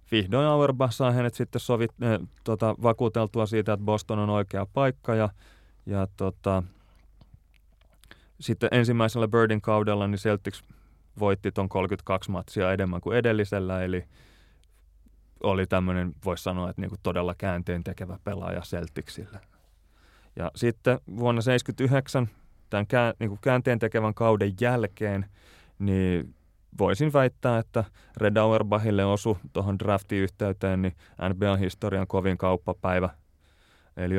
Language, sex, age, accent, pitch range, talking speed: Finnish, male, 30-49, native, 90-110 Hz, 115 wpm